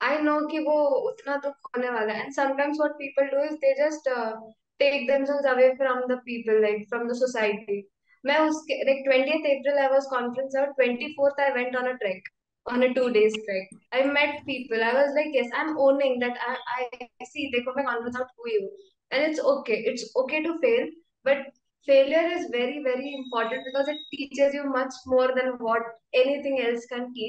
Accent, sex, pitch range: native, female, 245-285 Hz